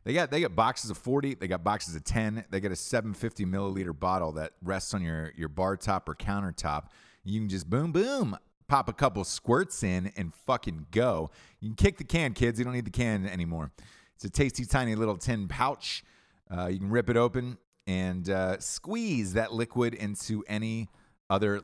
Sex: male